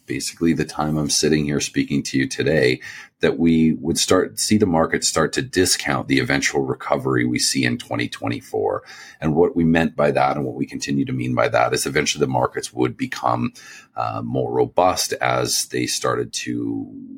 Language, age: English, 40-59